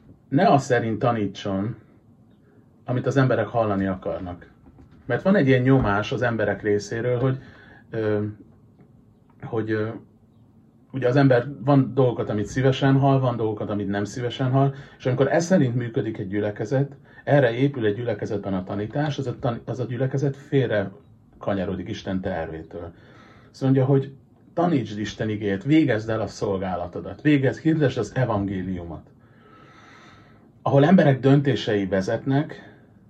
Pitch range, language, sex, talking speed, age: 100-135 Hz, Hungarian, male, 135 wpm, 40-59